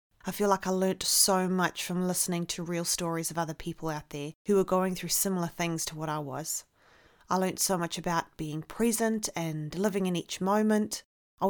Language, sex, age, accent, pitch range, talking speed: English, female, 30-49, Australian, 165-205 Hz, 210 wpm